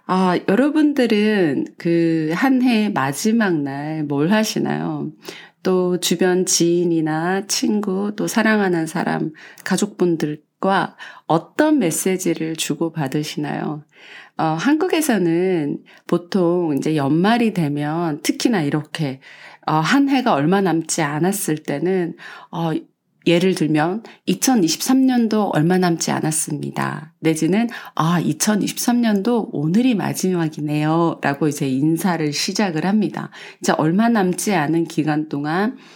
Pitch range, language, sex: 160-215 Hz, Korean, female